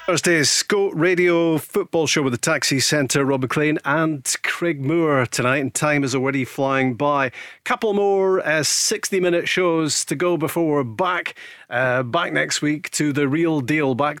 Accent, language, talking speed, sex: British, English, 175 wpm, male